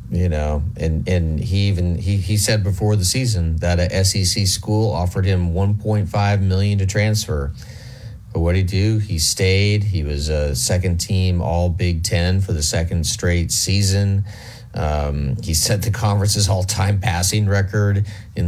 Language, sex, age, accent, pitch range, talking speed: English, male, 40-59, American, 90-105 Hz, 175 wpm